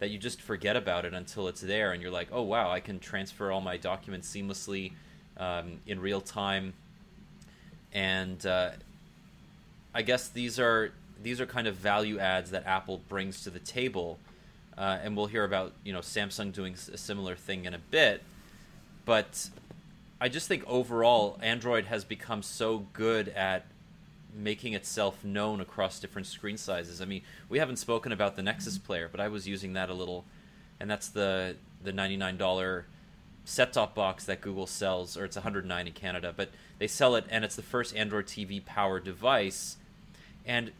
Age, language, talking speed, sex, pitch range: 30-49, English, 175 wpm, male, 95-110 Hz